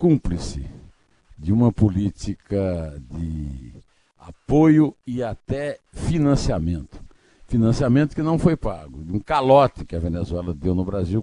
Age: 60-79